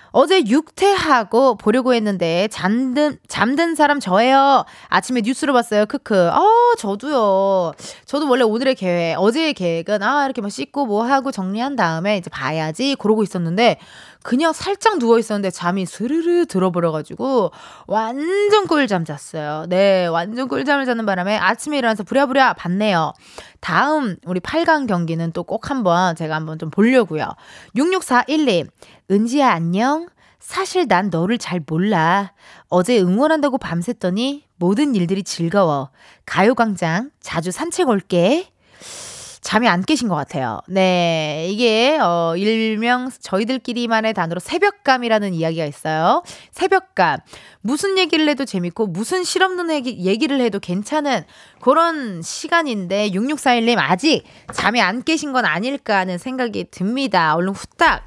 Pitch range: 180-285 Hz